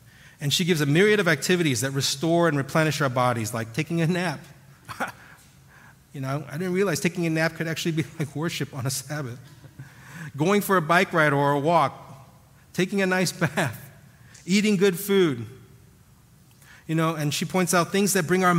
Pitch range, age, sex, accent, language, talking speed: 130-175 Hz, 40-59, male, American, English, 185 wpm